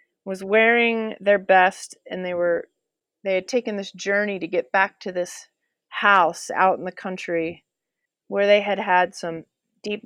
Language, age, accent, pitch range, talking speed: English, 30-49, American, 180-220 Hz, 165 wpm